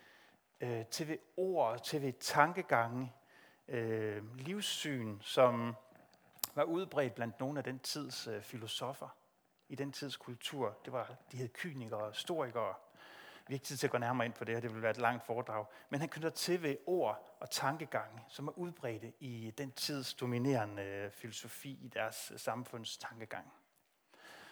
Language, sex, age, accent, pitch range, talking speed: Danish, male, 30-49, native, 115-145 Hz, 155 wpm